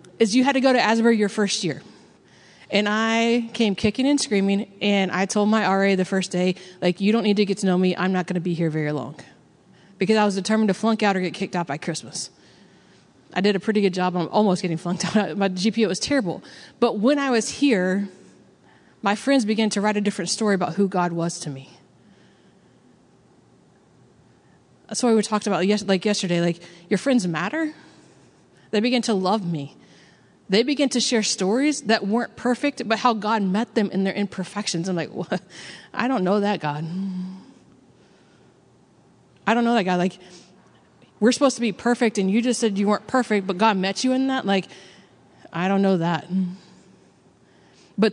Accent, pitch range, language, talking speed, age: American, 185-225 Hz, English, 195 wpm, 30-49